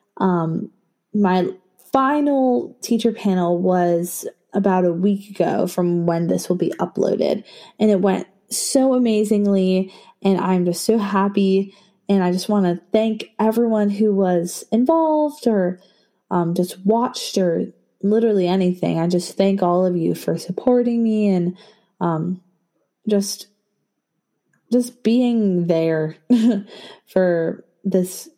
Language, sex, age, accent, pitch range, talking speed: English, female, 20-39, American, 180-220 Hz, 125 wpm